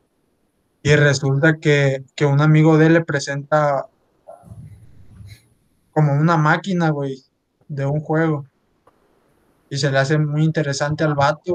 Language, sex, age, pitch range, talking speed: Spanish, male, 20-39, 145-175 Hz, 130 wpm